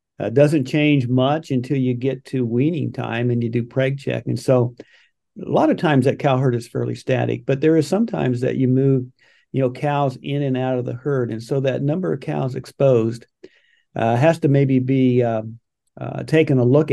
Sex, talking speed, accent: male, 215 wpm, American